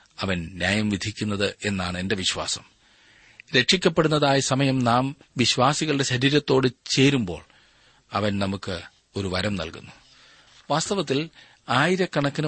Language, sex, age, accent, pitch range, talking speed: Malayalam, male, 40-59, native, 100-130 Hz, 90 wpm